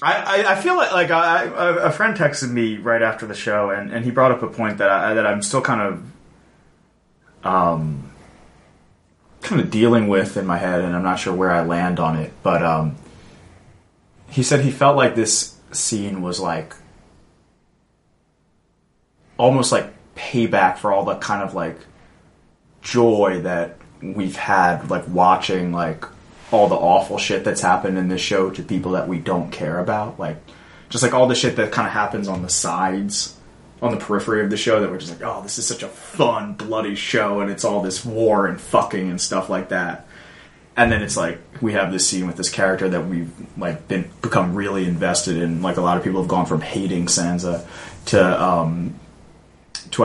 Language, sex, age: English, male, 20-39